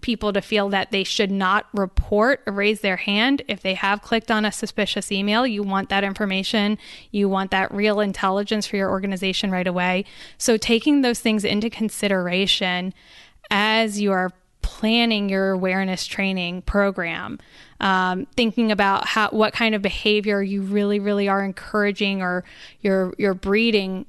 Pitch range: 190-220 Hz